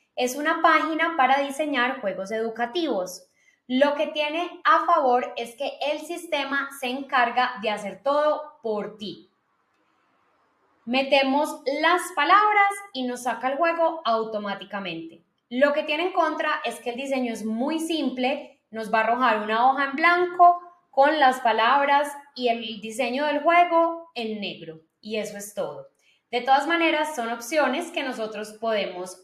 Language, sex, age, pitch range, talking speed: Spanish, female, 10-29, 230-310 Hz, 150 wpm